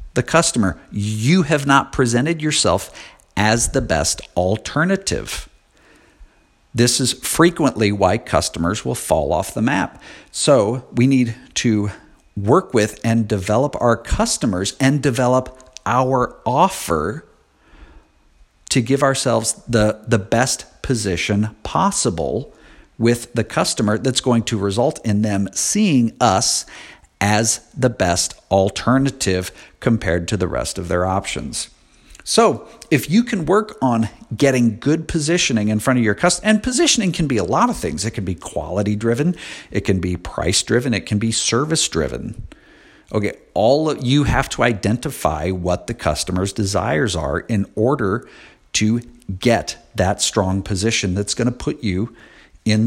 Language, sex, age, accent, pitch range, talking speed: English, male, 50-69, American, 100-130 Hz, 140 wpm